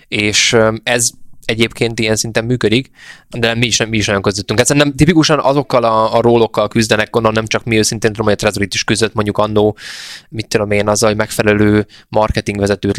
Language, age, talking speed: Hungarian, 20-39, 180 wpm